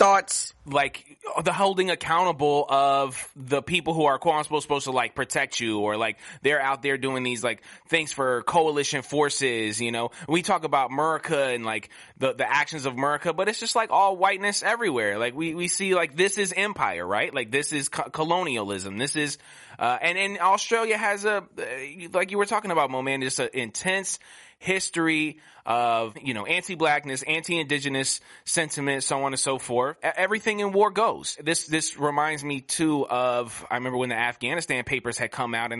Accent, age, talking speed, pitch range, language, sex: American, 20-39, 185 wpm, 125-170 Hz, English, male